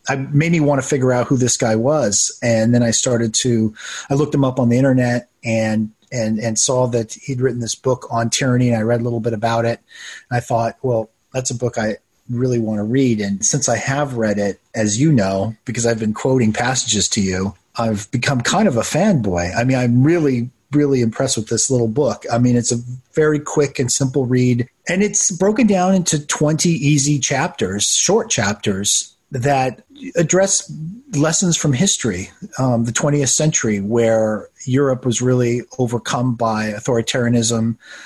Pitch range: 115-140 Hz